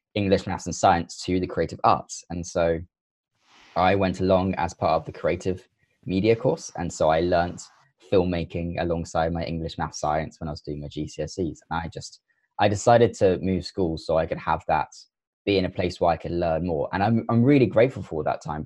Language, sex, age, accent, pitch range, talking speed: English, male, 20-39, British, 80-100 Hz, 210 wpm